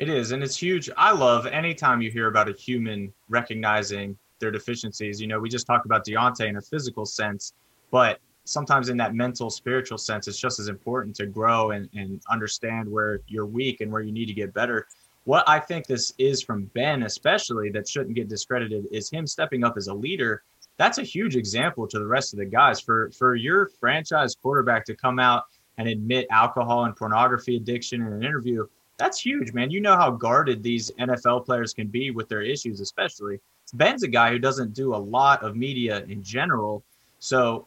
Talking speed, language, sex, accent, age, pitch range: 205 wpm, English, male, American, 20-39, 110-130 Hz